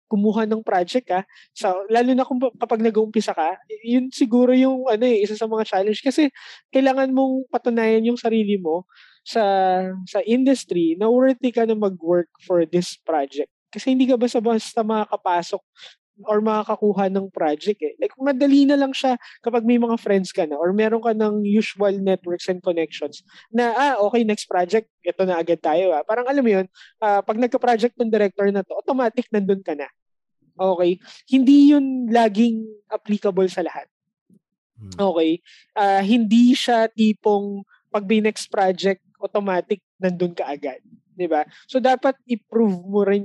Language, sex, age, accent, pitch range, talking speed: Filipino, male, 20-39, native, 185-240 Hz, 160 wpm